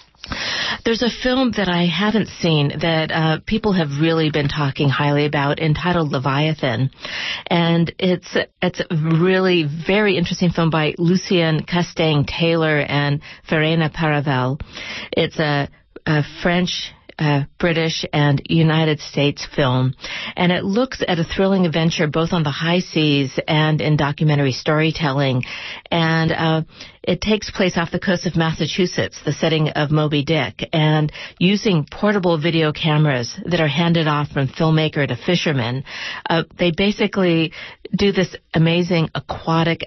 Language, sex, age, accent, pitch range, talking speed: English, female, 40-59, American, 150-180 Hz, 145 wpm